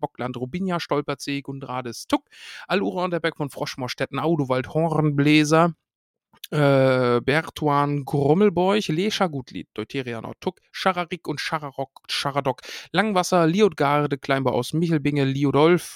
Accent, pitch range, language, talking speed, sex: German, 135-170 Hz, German, 115 wpm, male